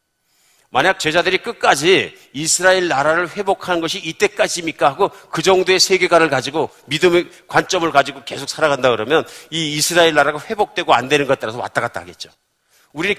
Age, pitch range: 40-59, 150-200 Hz